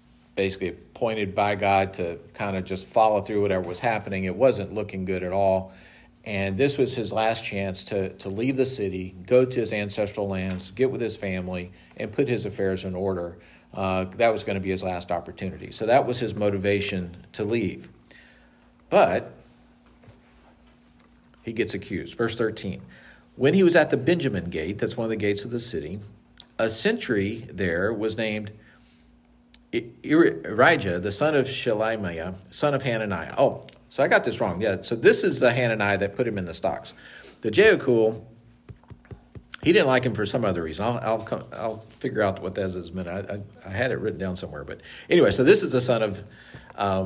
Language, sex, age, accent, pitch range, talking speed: English, male, 50-69, American, 95-115 Hz, 195 wpm